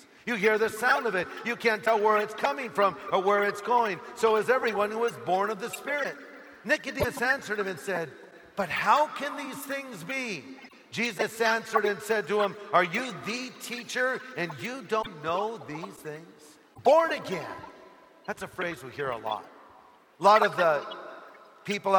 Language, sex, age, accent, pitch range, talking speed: English, male, 50-69, American, 185-235 Hz, 190 wpm